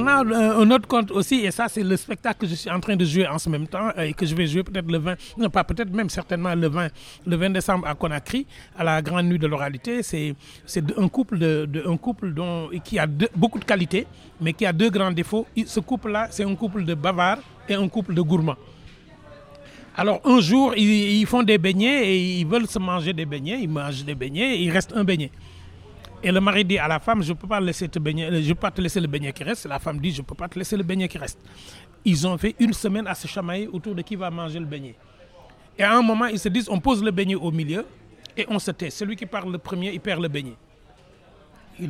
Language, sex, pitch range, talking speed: French, male, 165-215 Hz, 255 wpm